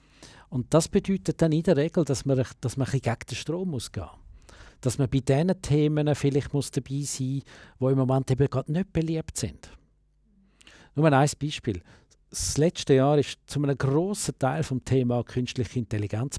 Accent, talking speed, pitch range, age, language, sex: Austrian, 170 wpm, 120-145 Hz, 50-69, German, male